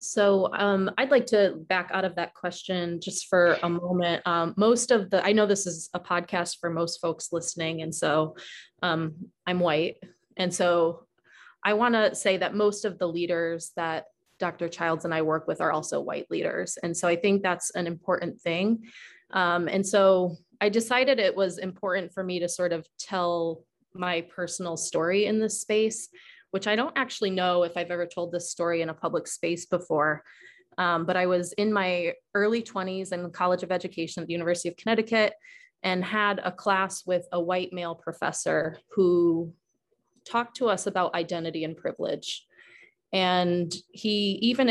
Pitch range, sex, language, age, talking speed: 170-205 Hz, female, English, 20-39, 185 wpm